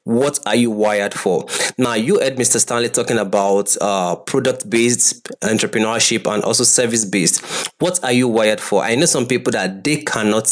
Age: 20-39